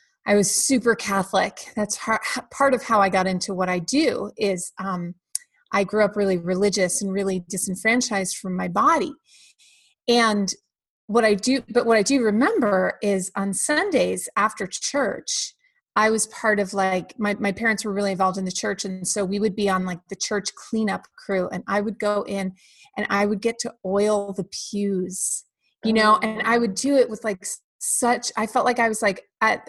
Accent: American